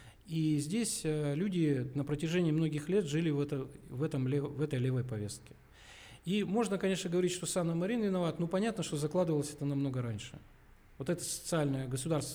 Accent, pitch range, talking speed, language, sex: native, 135-175 Hz, 175 wpm, Russian, male